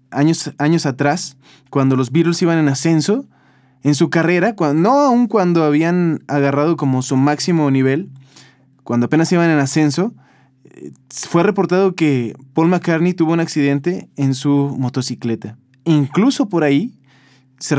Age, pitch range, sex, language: 20-39, 135-170 Hz, male, Spanish